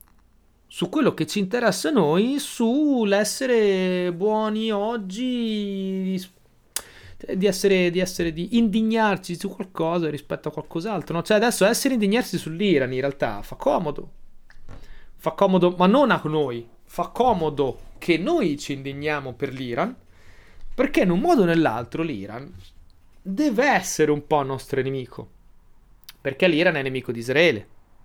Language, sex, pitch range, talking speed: Italian, male, 130-195 Hz, 140 wpm